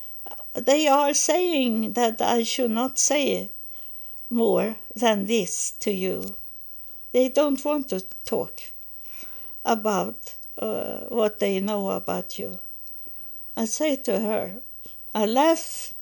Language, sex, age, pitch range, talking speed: English, female, 60-79, 215-265 Hz, 115 wpm